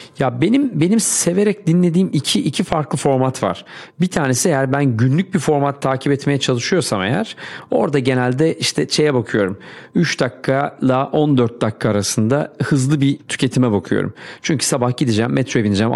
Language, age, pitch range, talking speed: Turkish, 40-59, 120-145 Hz, 150 wpm